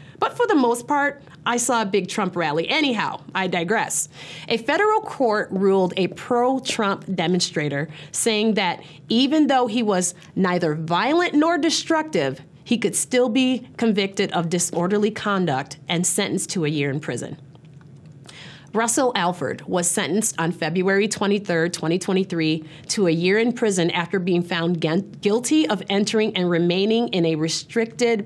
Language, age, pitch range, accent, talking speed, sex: English, 30-49, 160-215 Hz, American, 150 wpm, female